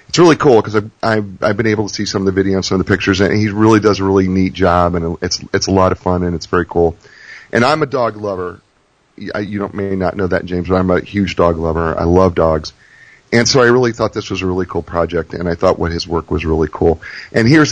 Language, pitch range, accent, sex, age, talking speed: English, 90-110 Hz, American, male, 40-59, 280 wpm